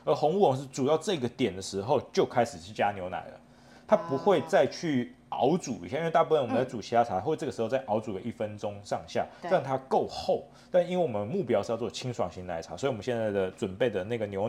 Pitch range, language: 110-140 Hz, Chinese